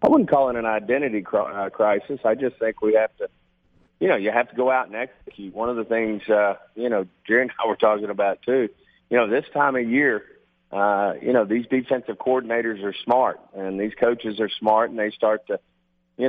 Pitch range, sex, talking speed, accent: 105-115 Hz, male, 220 wpm, American